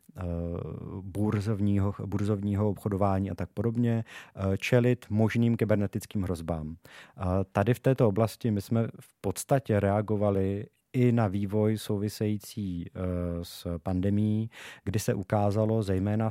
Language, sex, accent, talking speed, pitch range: Czech, male, native, 105 wpm, 95-110 Hz